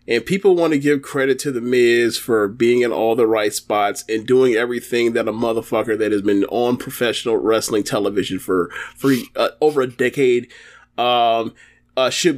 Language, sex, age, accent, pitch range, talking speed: English, male, 30-49, American, 120-180 Hz, 185 wpm